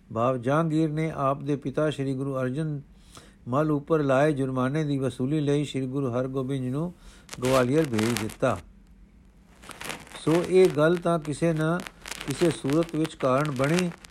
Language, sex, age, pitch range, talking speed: Punjabi, male, 60-79, 130-160 Hz, 145 wpm